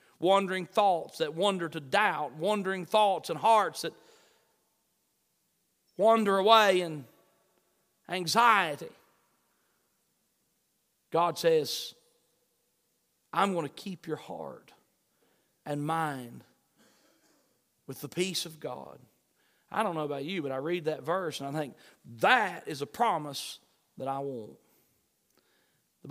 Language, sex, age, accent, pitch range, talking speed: English, male, 40-59, American, 155-230 Hz, 115 wpm